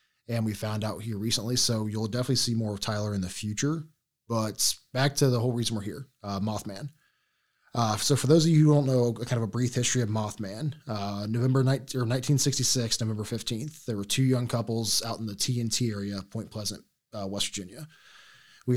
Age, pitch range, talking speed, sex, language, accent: 20-39, 105-125 Hz, 210 wpm, male, English, American